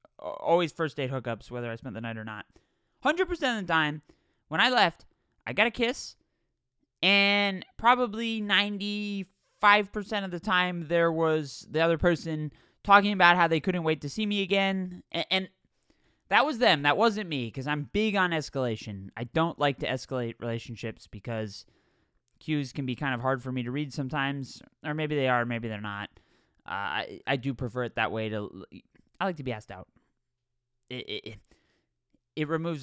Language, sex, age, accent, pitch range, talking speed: English, male, 20-39, American, 130-210 Hz, 185 wpm